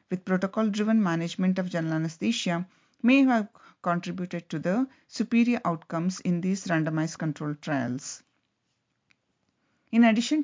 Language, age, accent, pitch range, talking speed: English, 50-69, Indian, 165-215 Hz, 120 wpm